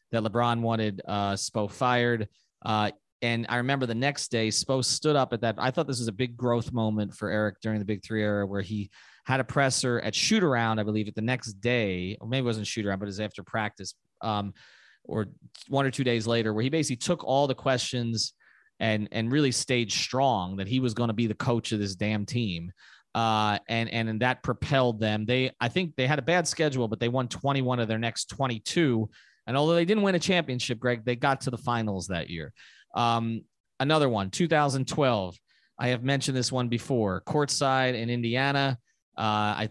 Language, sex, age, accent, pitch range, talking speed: English, male, 30-49, American, 110-140 Hz, 215 wpm